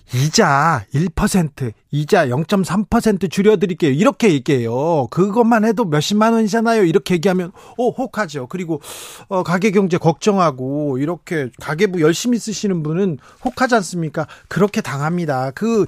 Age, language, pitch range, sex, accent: 40-59, Korean, 140-200 Hz, male, native